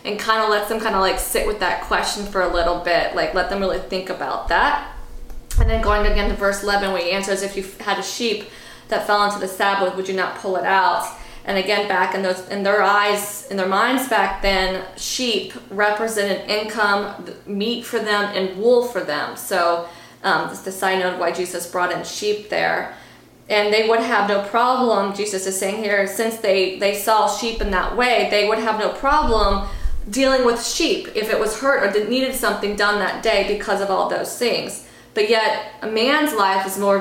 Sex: female